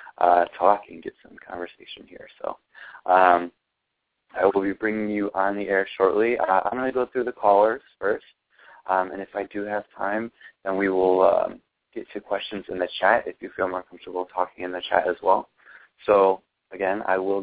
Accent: American